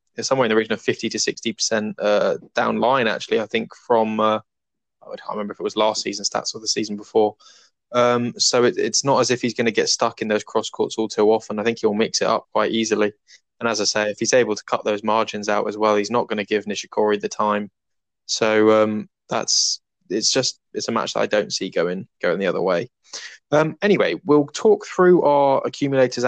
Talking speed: 230 wpm